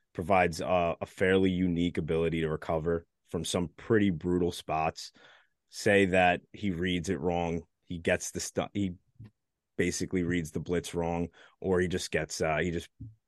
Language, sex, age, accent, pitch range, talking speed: English, male, 20-39, American, 85-100 Hz, 165 wpm